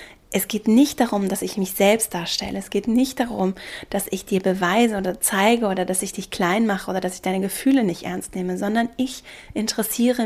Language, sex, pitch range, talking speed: German, female, 195-235 Hz, 210 wpm